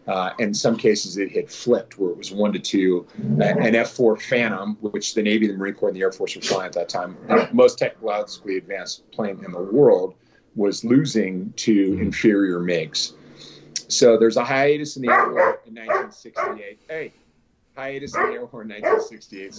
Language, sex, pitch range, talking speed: English, male, 100-140 Hz, 185 wpm